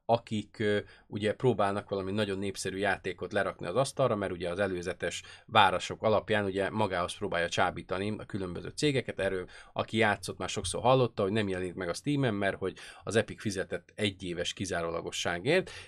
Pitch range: 100-130 Hz